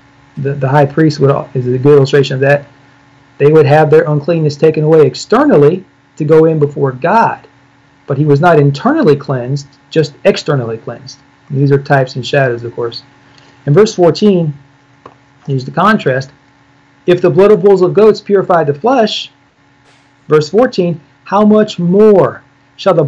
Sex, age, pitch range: male, 40-59, 140-170 Hz